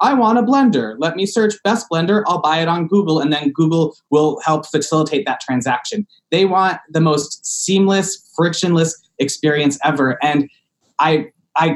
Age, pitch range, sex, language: 20-39, 150-190 Hz, male, English